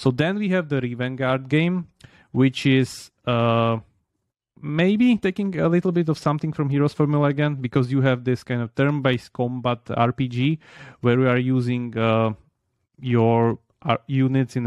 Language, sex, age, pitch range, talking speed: English, male, 30-49, 115-130 Hz, 155 wpm